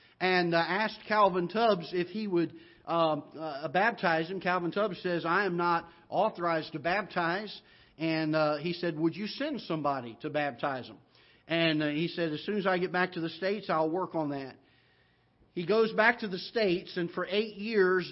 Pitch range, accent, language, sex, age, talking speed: 160-185 Hz, American, English, male, 50-69, 190 wpm